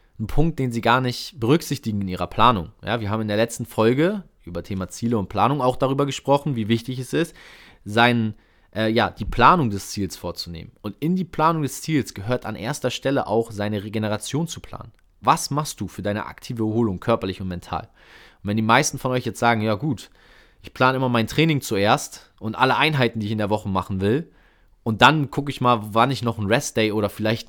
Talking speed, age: 220 wpm, 30-49